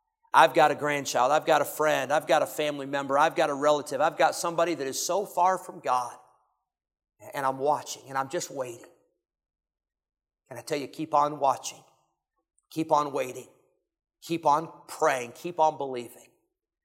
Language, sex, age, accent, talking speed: English, male, 50-69, American, 175 wpm